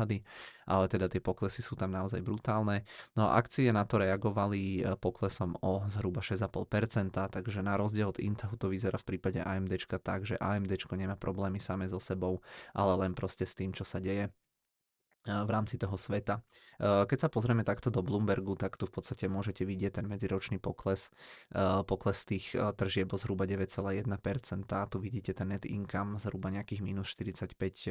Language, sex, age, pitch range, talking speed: Czech, male, 20-39, 95-105 Hz, 170 wpm